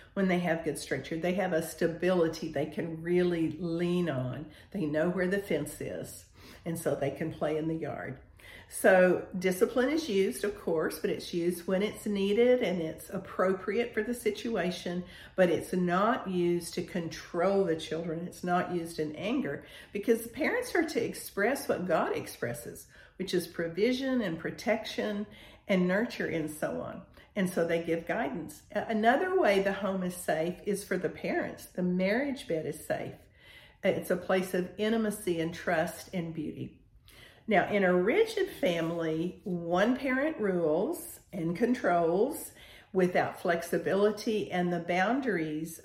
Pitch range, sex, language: 170-210 Hz, female, English